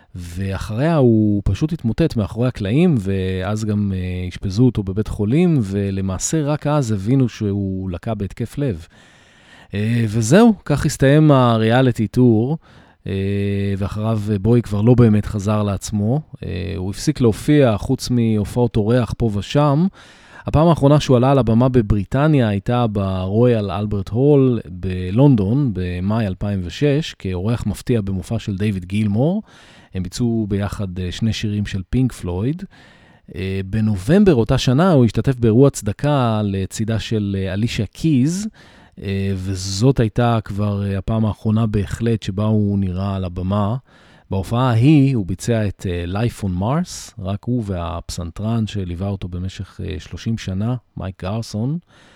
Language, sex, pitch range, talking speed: Hebrew, male, 100-125 Hz, 130 wpm